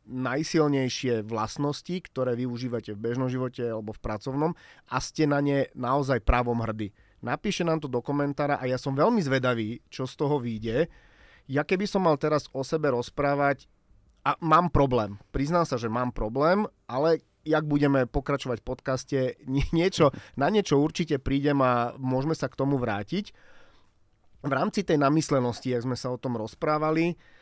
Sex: male